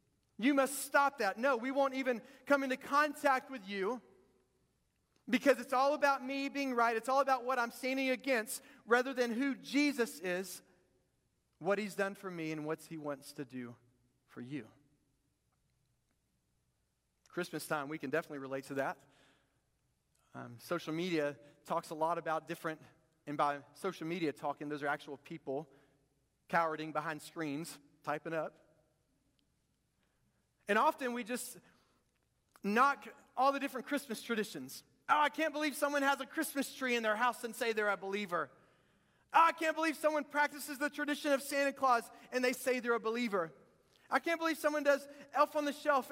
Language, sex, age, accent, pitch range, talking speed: English, male, 40-59, American, 165-270 Hz, 165 wpm